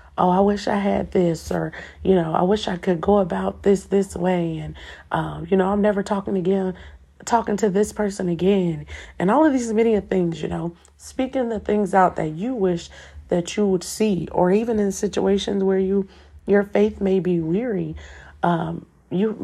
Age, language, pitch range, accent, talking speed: 40-59, English, 175-205 Hz, American, 195 wpm